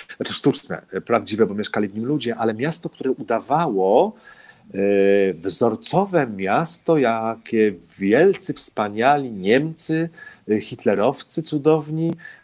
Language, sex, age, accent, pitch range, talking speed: Polish, male, 40-59, native, 110-130 Hz, 90 wpm